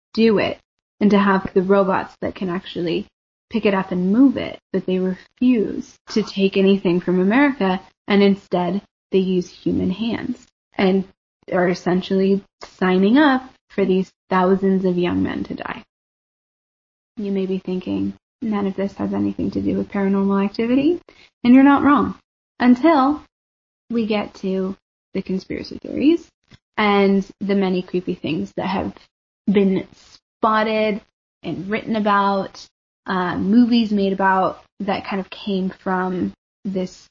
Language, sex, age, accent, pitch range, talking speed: English, female, 20-39, American, 190-225 Hz, 145 wpm